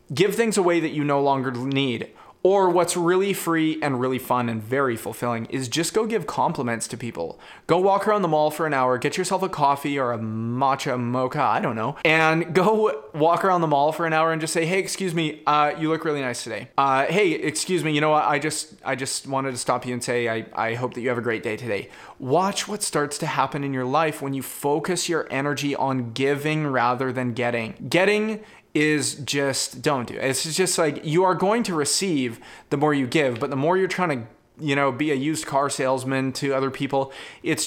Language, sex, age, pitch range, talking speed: English, male, 20-39, 130-165 Hz, 230 wpm